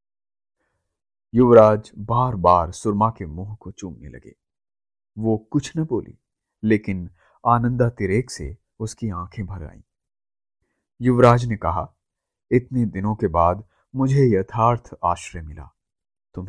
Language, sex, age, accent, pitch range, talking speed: Hindi, male, 30-49, native, 95-125 Hz, 115 wpm